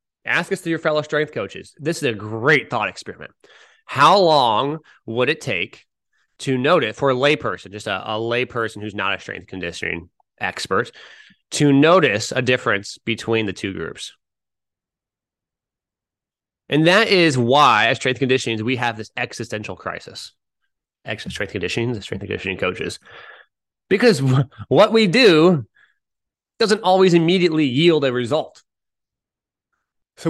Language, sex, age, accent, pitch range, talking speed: English, male, 20-39, American, 115-150 Hz, 140 wpm